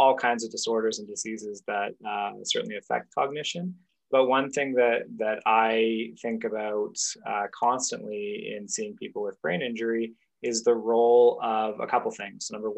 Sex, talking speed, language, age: male, 165 wpm, English, 20-39